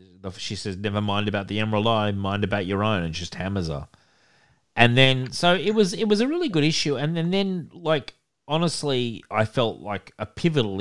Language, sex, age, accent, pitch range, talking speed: English, male, 30-49, Australian, 100-135 Hz, 210 wpm